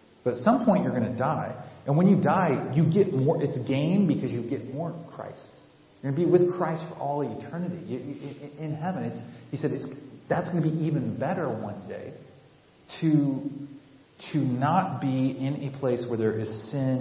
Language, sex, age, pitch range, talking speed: English, male, 30-49, 110-150 Hz, 200 wpm